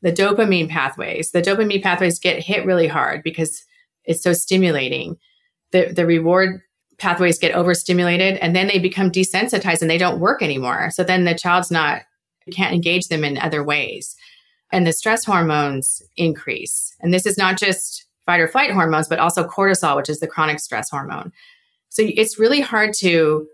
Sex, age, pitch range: female, 30-49, 155-200 Hz